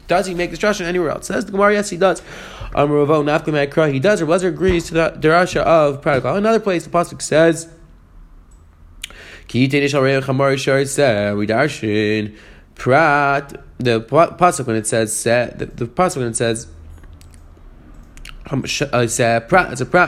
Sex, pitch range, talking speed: male, 125-175 Hz, 135 wpm